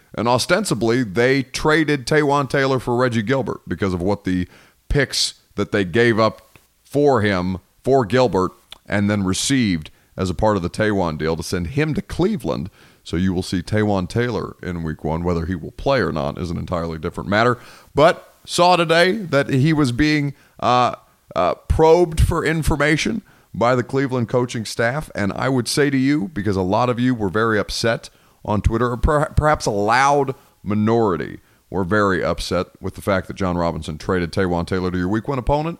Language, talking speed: English, 190 wpm